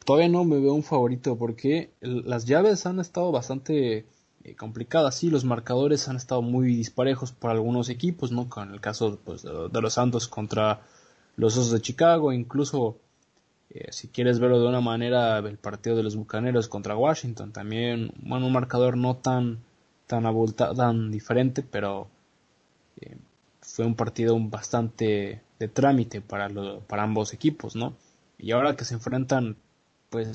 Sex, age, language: male, 20-39, Spanish